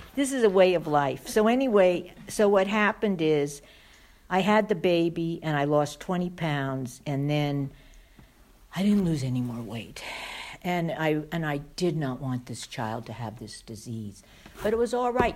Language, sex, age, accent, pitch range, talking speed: English, female, 60-79, American, 130-190 Hz, 185 wpm